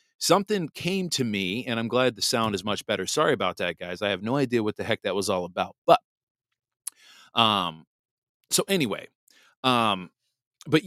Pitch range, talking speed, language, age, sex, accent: 110-150 Hz, 180 wpm, English, 30-49, male, American